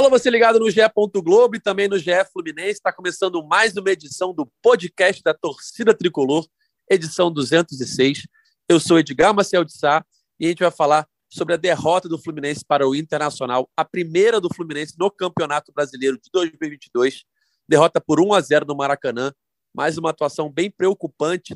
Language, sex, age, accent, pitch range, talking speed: Portuguese, male, 30-49, Brazilian, 155-200 Hz, 165 wpm